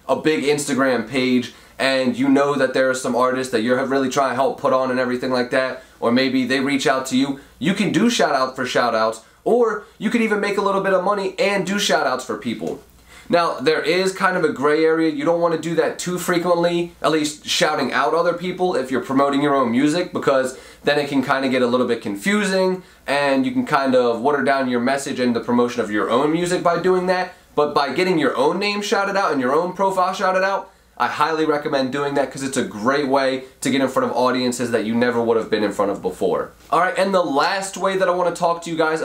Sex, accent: male, American